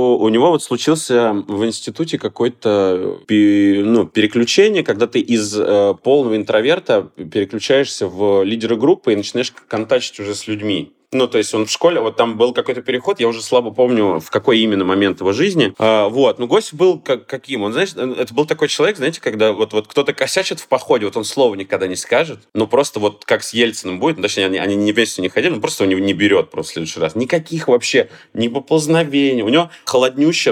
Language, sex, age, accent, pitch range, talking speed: Russian, male, 20-39, native, 100-135 Hz, 200 wpm